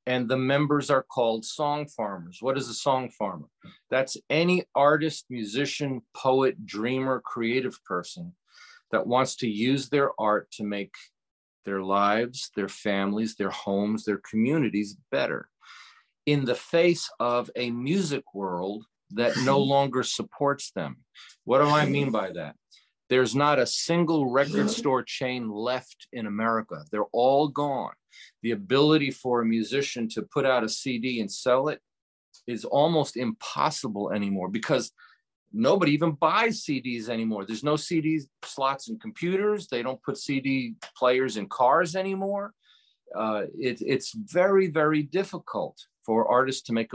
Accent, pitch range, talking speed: American, 115-150 Hz, 145 wpm